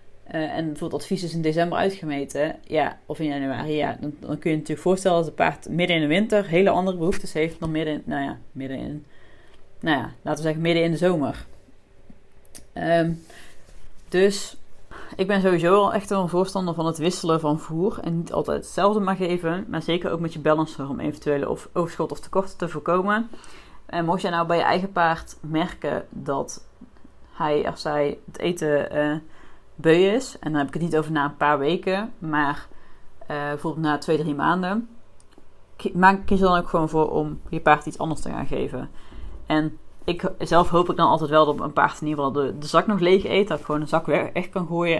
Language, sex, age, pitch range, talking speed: Dutch, female, 30-49, 150-175 Hz, 215 wpm